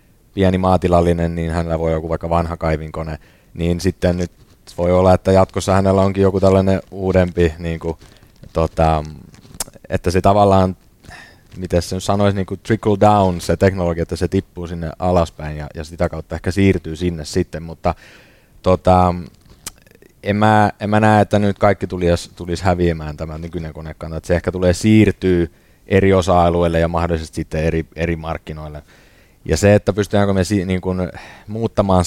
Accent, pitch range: native, 80-95 Hz